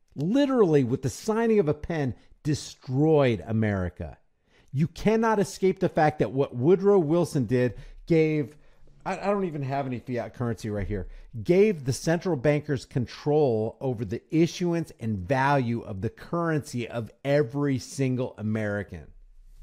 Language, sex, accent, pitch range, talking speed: English, male, American, 130-180 Hz, 140 wpm